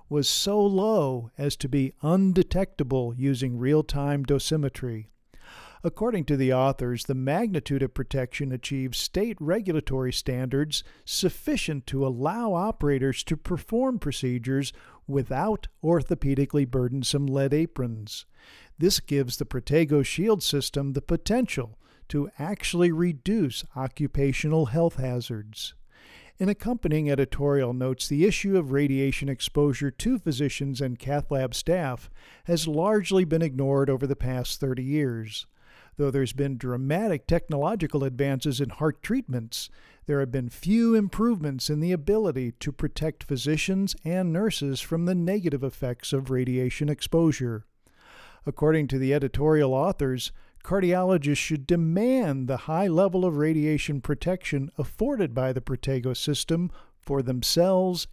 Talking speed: 125 wpm